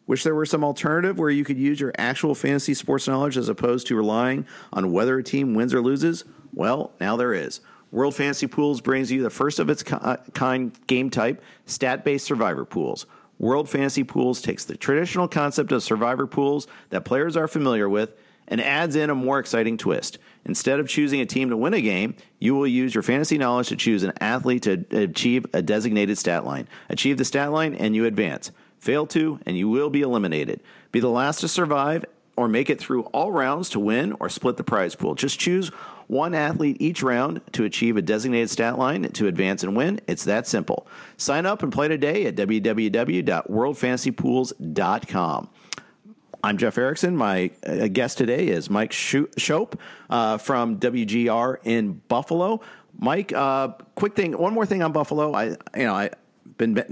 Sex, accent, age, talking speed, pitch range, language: male, American, 50-69, 185 wpm, 120-150 Hz, English